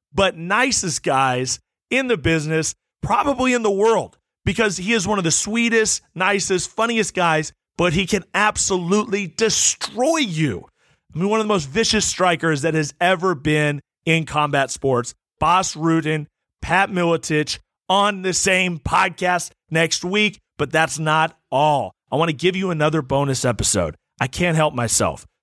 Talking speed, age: 160 wpm, 30-49